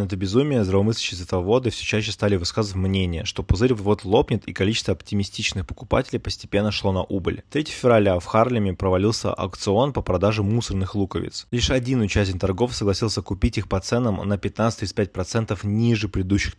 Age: 20-39